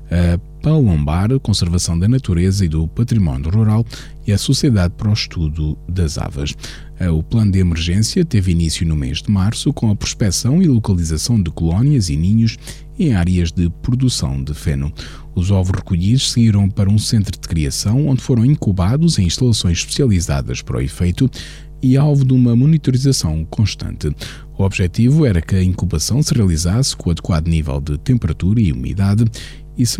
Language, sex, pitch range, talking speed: Portuguese, male, 80-120 Hz, 170 wpm